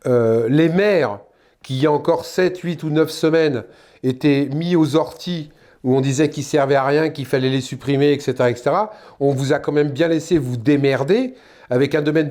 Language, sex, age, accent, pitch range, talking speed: French, male, 40-59, French, 140-190 Hz, 205 wpm